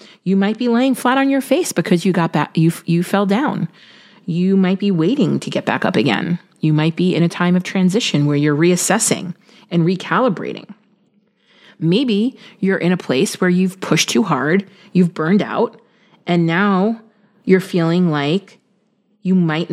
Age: 30-49